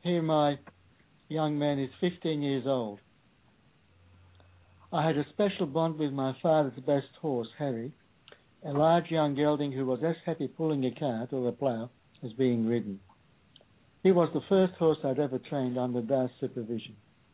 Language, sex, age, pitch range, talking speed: English, male, 60-79, 125-160 Hz, 165 wpm